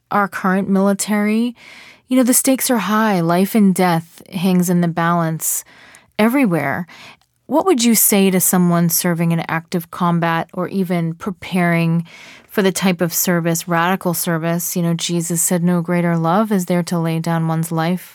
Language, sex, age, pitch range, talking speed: English, female, 30-49, 170-195 Hz, 170 wpm